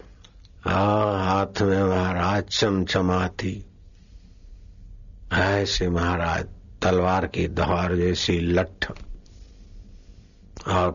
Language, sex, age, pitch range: Hindi, male, 50-69, 90-115 Hz